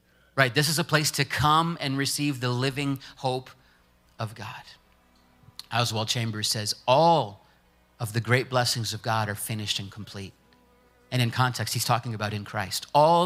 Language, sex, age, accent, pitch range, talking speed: English, male, 30-49, American, 105-130 Hz, 165 wpm